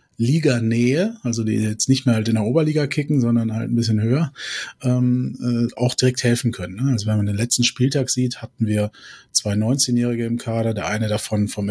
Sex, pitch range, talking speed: male, 110-125 Hz, 200 wpm